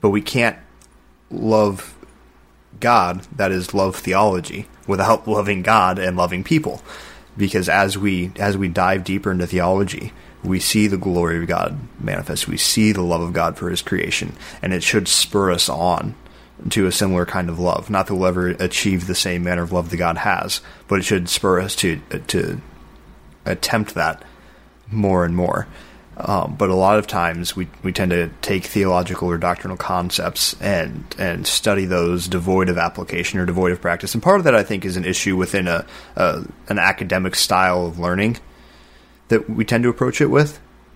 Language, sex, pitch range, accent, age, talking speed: English, male, 90-100 Hz, American, 20-39, 185 wpm